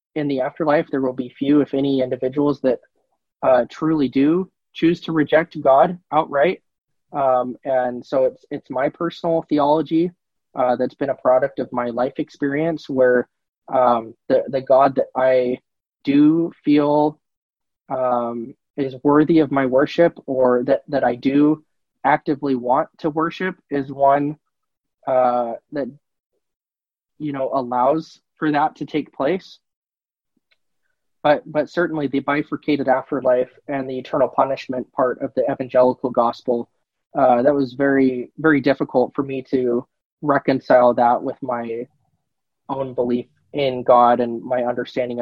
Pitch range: 125-150 Hz